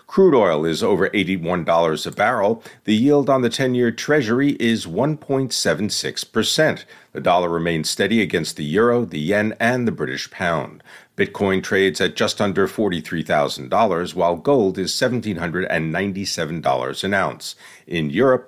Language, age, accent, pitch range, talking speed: English, 50-69, American, 95-125 Hz, 135 wpm